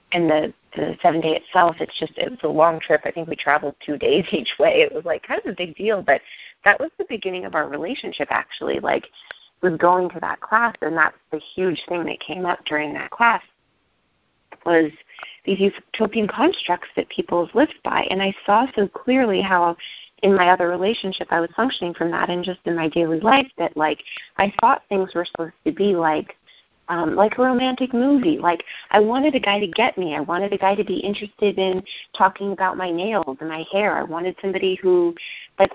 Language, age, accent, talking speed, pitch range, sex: English, 30-49, American, 215 wpm, 170-220 Hz, female